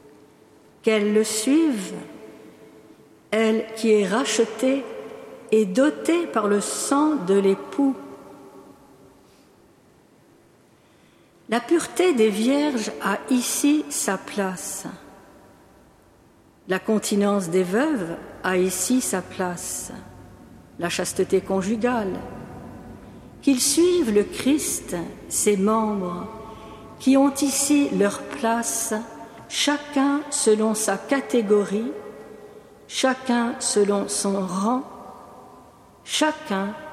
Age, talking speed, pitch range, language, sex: 60-79, 85 wpm, 200-270 Hz, French, female